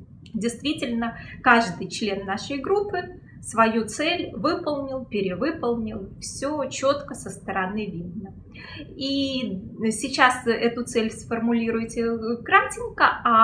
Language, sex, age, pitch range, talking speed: Russian, female, 20-39, 195-265 Hz, 95 wpm